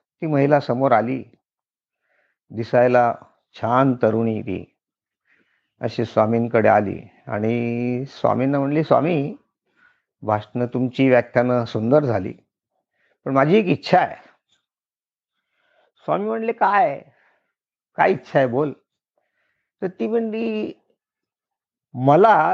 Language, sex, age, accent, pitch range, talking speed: Marathi, male, 50-69, native, 125-170 Hz, 95 wpm